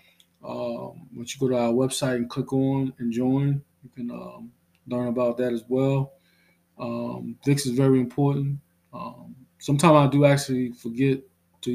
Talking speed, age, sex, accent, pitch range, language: 165 wpm, 20-39, male, American, 115-135 Hz, English